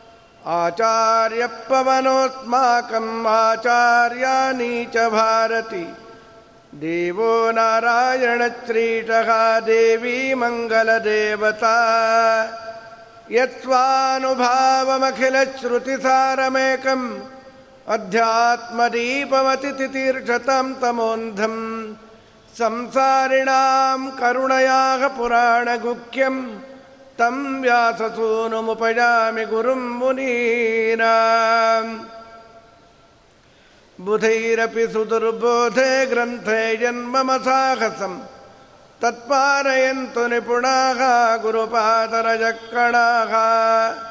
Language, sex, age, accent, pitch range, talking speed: Kannada, male, 50-69, native, 225-260 Hz, 35 wpm